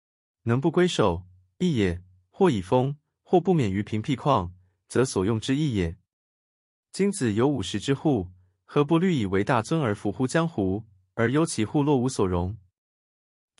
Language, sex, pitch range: Chinese, male, 95-145 Hz